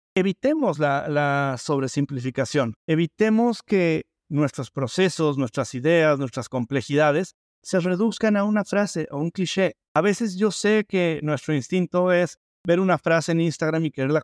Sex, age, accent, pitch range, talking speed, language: male, 50-69, Mexican, 145-185 Hz, 150 wpm, Spanish